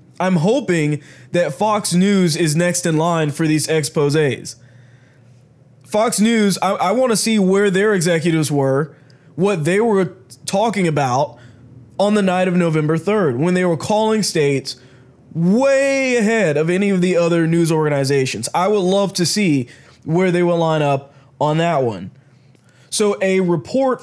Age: 20-39